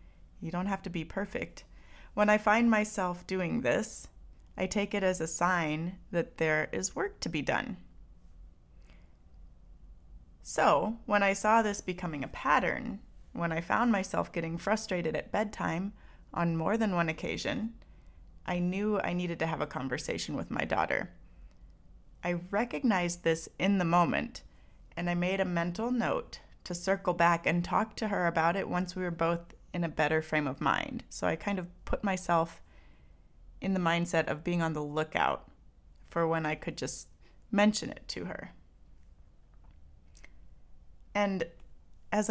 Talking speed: 160 wpm